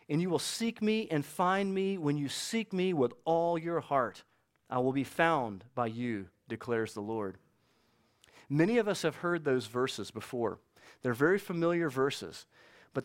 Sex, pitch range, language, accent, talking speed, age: male, 125-185 Hz, English, American, 175 wpm, 40-59